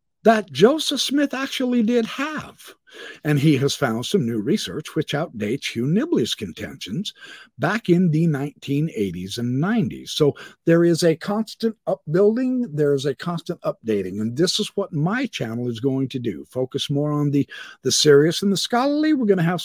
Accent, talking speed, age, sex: American, 175 wpm, 50-69, male